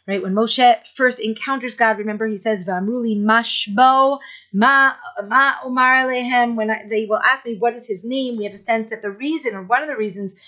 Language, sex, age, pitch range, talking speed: English, female, 40-59, 210-255 Hz, 200 wpm